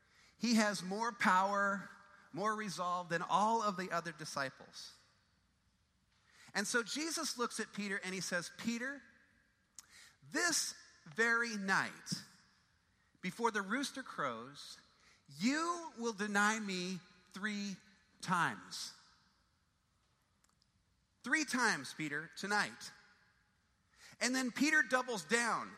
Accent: American